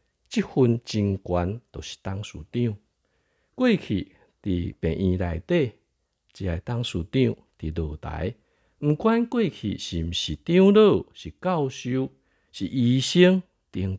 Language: Chinese